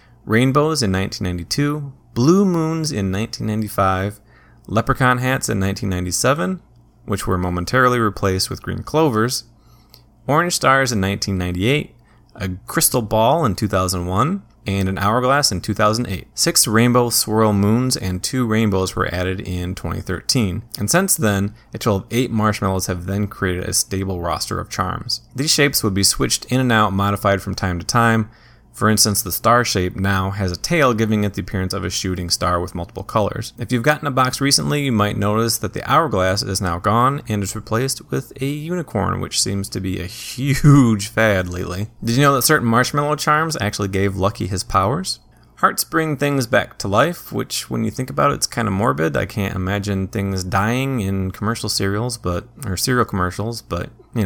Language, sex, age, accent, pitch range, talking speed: English, male, 20-39, American, 95-125 Hz, 180 wpm